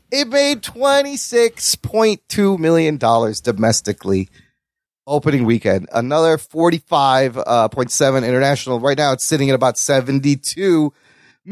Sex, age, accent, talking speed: male, 30-49, American, 110 wpm